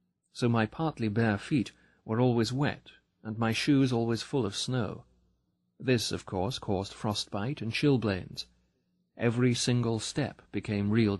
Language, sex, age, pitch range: English, male, 40-59, 100-120 Hz